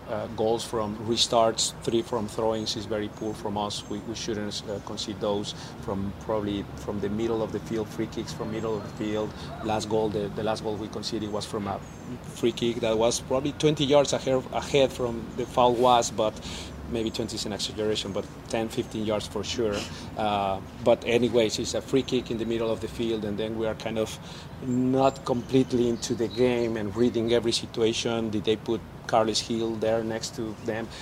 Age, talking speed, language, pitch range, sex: 30-49, 205 wpm, English, 105-120 Hz, male